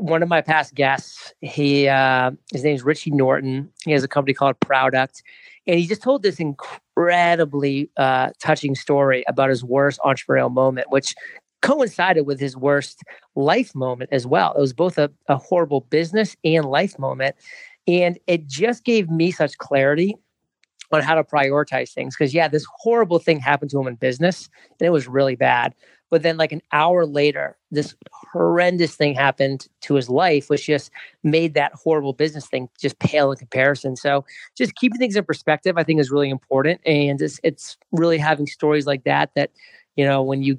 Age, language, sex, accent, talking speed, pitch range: 40-59, English, male, American, 185 wpm, 135-165 Hz